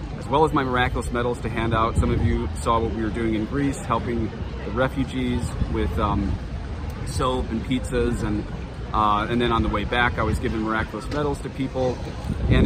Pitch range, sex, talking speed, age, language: 105-120 Hz, male, 200 wpm, 30-49, English